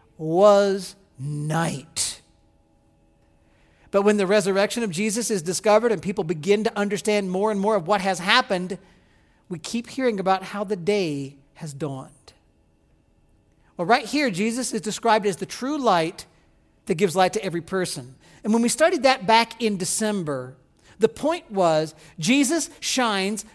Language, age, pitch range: English, 40-59, 175-255 Hz